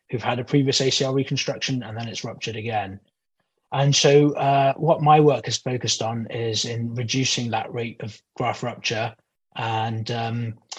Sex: male